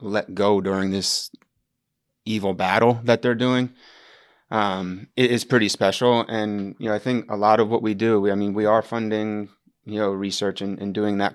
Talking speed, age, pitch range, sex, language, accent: 200 wpm, 20-39, 95-110 Hz, male, English, American